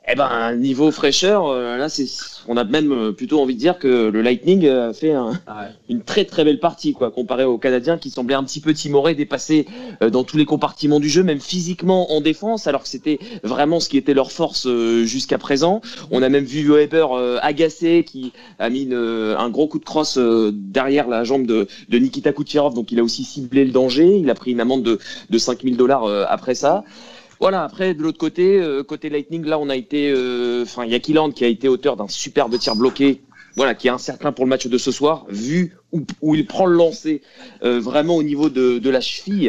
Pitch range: 125-155 Hz